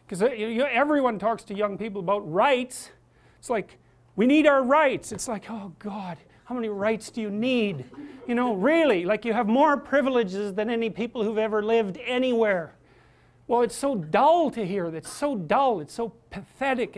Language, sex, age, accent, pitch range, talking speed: English, male, 50-69, American, 195-250 Hz, 185 wpm